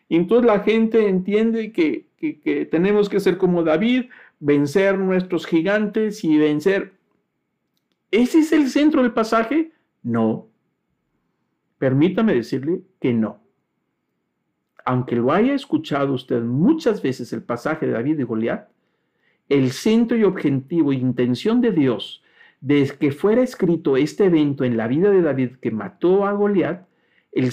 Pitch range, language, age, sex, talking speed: 130-205 Hz, Spanish, 50-69, male, 140 wpm